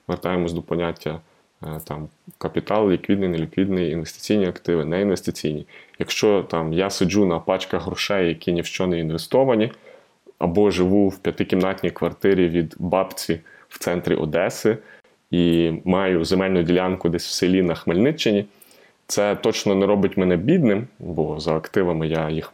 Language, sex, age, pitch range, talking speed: Ukrainian, male, 20-39, 85-95 Hz, 145 wpm